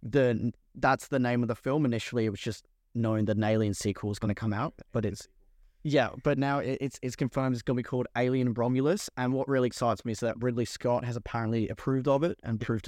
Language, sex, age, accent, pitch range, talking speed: English, male, 10-29, Australian, 105-125 Hz, 240 wpm